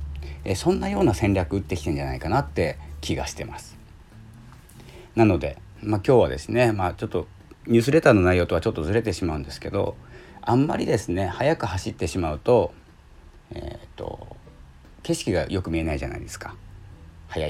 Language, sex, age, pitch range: Japanese, male, 40-59, 80-115 Hz